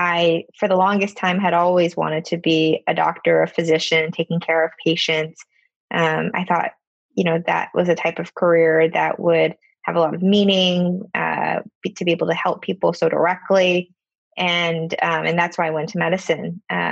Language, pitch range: English, 165-185 Hz